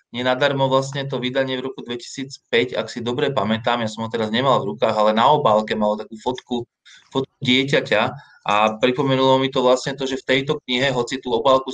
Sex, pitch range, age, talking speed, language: male, 110-130 Hz, 20-39, 200 wpm, Slovak